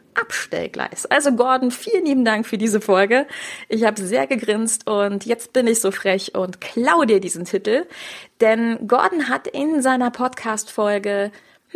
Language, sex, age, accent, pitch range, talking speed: German, female, 30-49, German, 195-250 Hz, 155 wpm